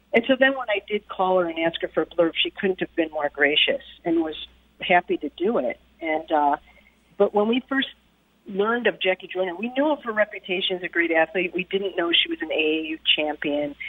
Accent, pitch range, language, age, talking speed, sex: American, 170-220 Hz, English, 40-59, 230 wpm, female